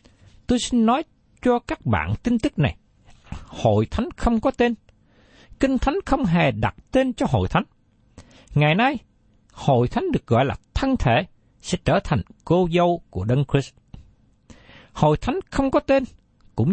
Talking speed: 165 wpm